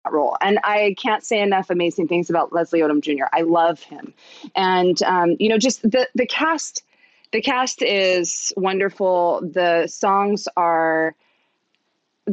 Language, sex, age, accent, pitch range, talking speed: English, female, 20-39, American, 170-205 Hz, 145 wpm